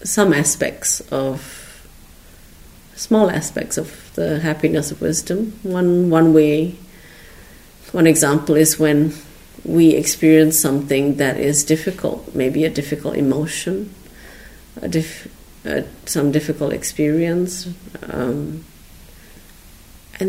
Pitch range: 135-170 Hz